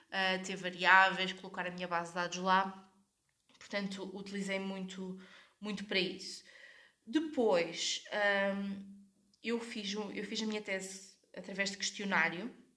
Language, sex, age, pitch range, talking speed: Portuguese, female, 20-39, 185-215 Hz, 115 wpm